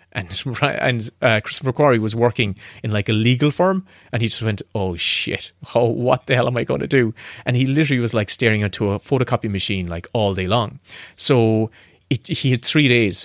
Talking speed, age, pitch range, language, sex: 210 wpm, 30-49, 105-135 Hz, English, male